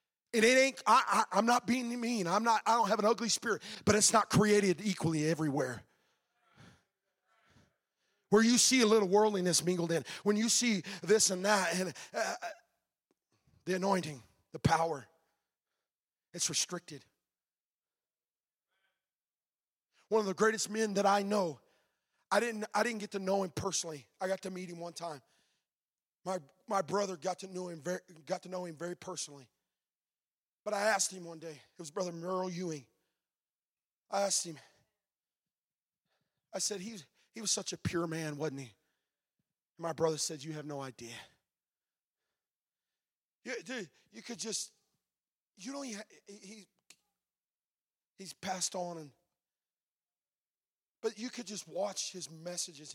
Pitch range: 165-205 Hz